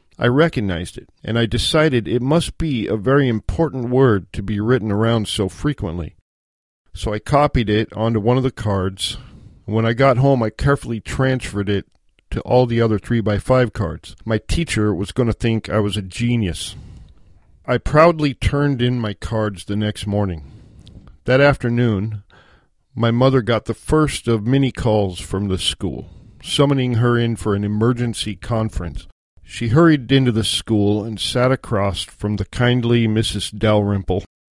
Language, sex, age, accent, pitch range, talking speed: English, male, 50-69, American, 105-130 Hz, 170 wpm